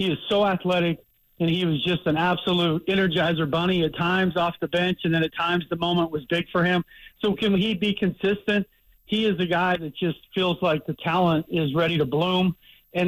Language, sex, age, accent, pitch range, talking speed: English, male, 50-69, American, 170-205 Hz, 215 wpm